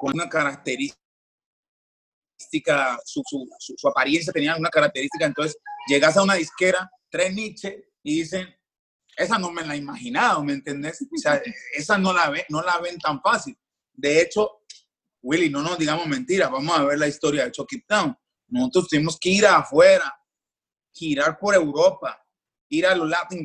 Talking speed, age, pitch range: 165 wpm, 30-49, 165-250 Hz